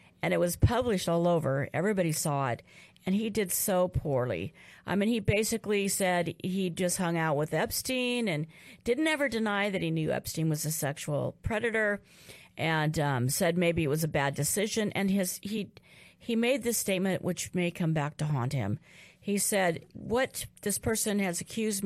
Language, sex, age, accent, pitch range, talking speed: English, female, 50-69, American, 150-195 Hz, 185 wpm